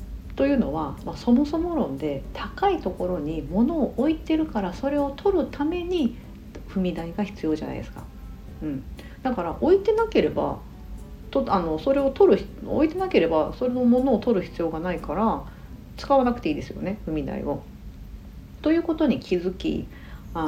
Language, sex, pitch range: Japanese, female, 155-250 Hz